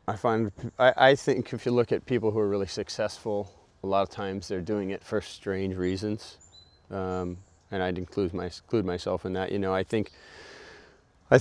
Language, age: English, 30-49